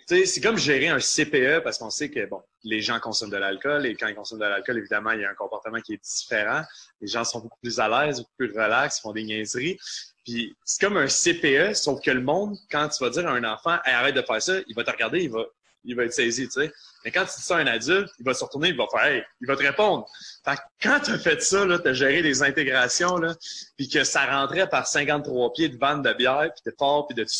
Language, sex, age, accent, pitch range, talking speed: French, male, 30-49, Canadian, 120-180 Hz, 280 wpm